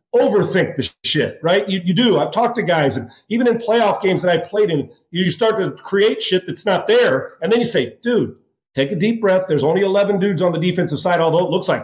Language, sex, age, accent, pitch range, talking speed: English, male, 40-59, American, 170-210 Hz, 250 wpm